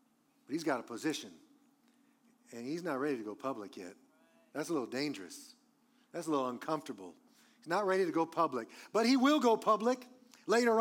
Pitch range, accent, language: 180-260 Hz, American, English